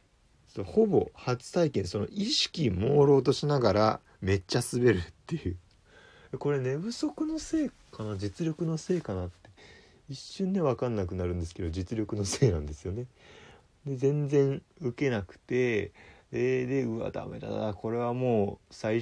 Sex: male